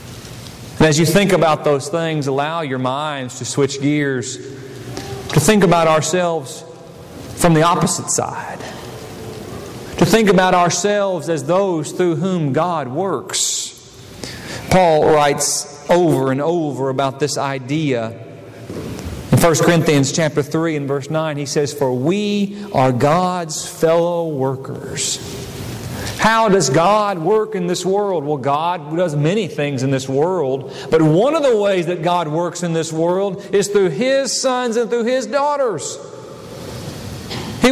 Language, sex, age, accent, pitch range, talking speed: English, male, 40-59, American, 145-230 Hz, 145 wpm